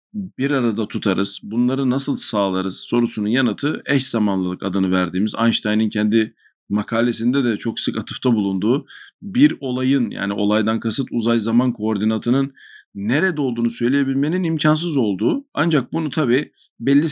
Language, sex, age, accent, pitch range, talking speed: Turkish, male, 50-69, native, 110-140 Hz, 125 wpm